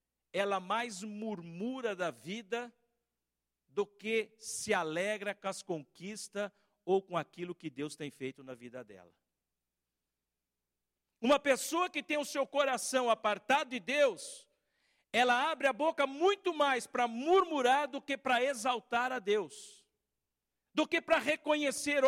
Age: 50-69